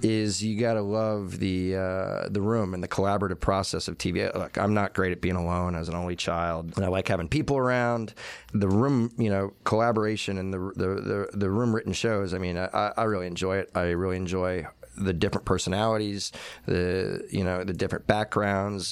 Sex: male